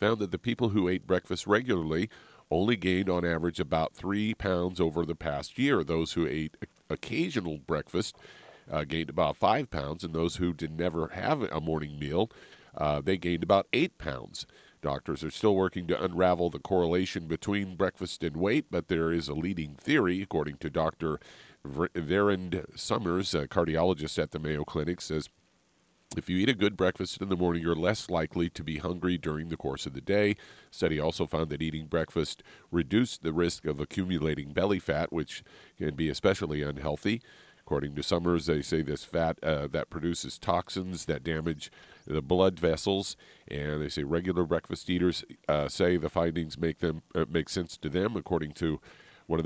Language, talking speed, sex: English, 180 wpm, male